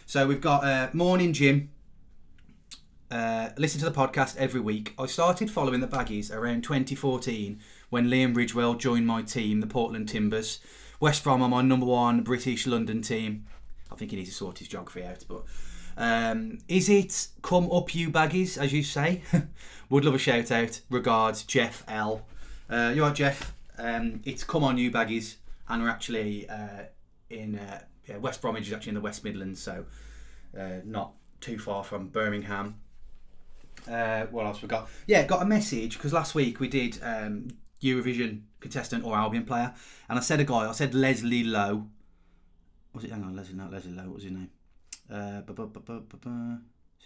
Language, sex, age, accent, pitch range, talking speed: English, male, 20-39, British, 105-135 Hz, 180 wpm